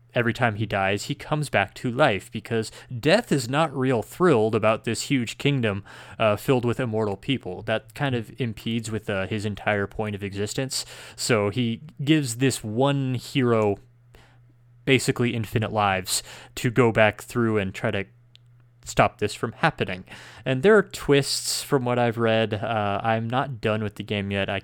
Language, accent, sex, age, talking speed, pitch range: English, American, male, 20-39, 175 wpm, 105-130 Hz